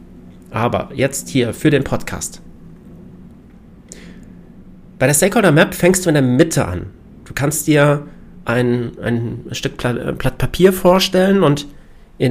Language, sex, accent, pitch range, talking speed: German, male, German, 125-175 Hz, 125 wpm